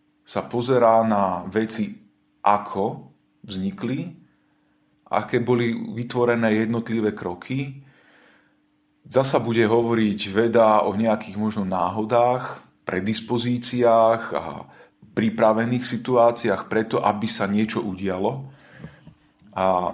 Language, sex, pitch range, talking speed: Slovak, male, 105-120 Hz, 85 wpm